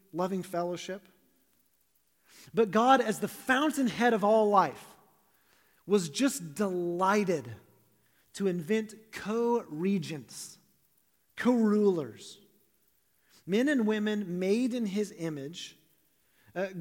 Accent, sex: American, male